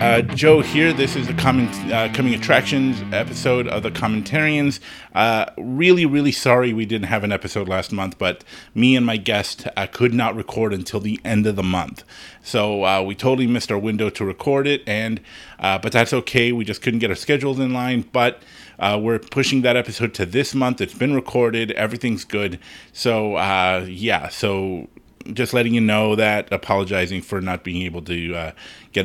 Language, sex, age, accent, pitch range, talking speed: English, male, 30-49, American, 100-130 Hz, 195 wpm